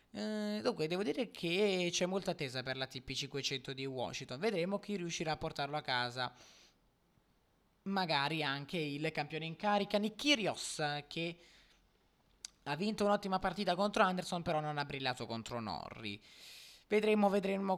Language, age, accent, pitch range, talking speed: Italian, 20-39, native, 135-190 Hz, 140 wpm